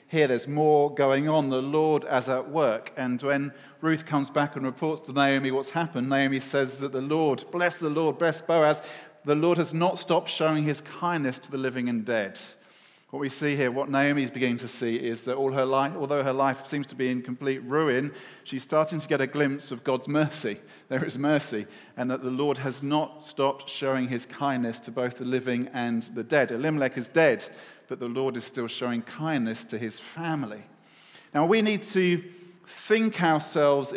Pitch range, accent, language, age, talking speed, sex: 135-160 Hz, British, English, 40-59, 205 wpm, male